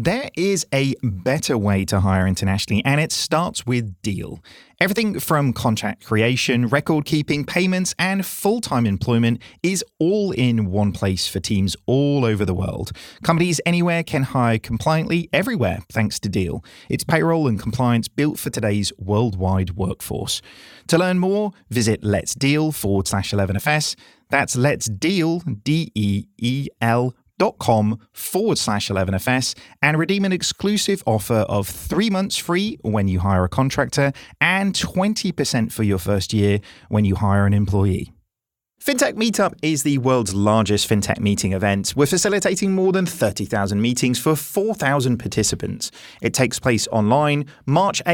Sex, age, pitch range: male, 30-49, 105-170 Hz